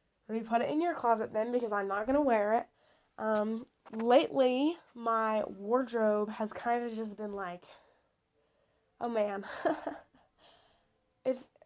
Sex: female